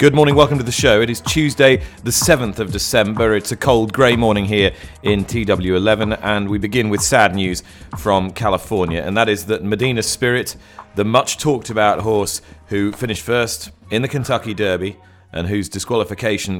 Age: 30-49